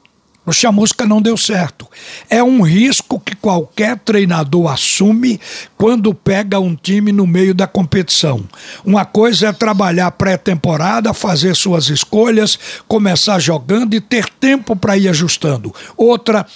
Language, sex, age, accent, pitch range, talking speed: Portuguese, male, 60-79, Brazilian, 185-220 Hz, 135 wpm